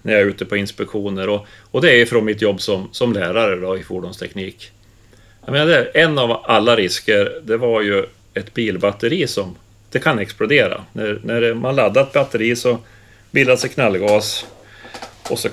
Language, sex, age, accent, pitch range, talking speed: Swedish, male, 30-49, native, 100-120 Hz, 175 wpm